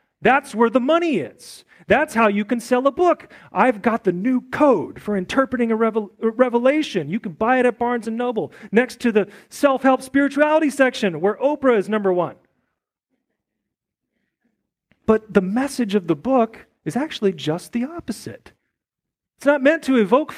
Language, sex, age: English, male, 40-59